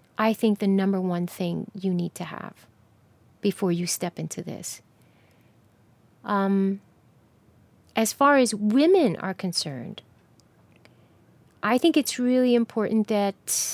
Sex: female